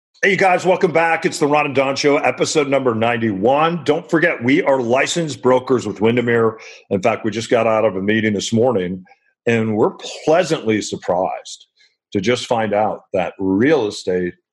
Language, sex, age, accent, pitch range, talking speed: English, male, 50-69, American, 110-165 Hz, 180 wpm